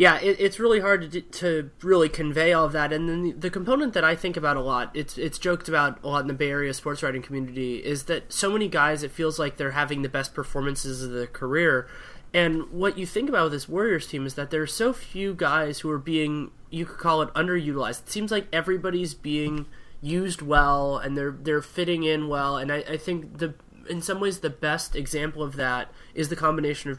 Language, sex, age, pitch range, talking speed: English, male, 20-39, 140-170 Hz, 240 wpm